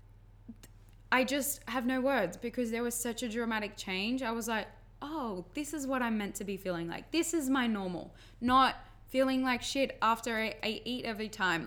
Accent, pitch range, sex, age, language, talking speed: Australian, 170-240 Hz, female, 10-29, English, 200 wpm